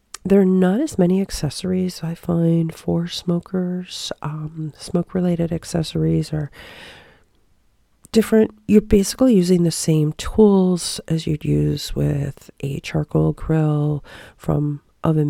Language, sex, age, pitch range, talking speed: English, female, 40-59, 150-180 Hz, 120 wpm